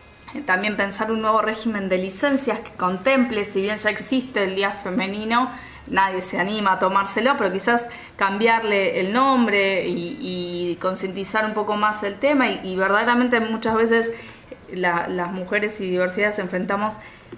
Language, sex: Spanish, female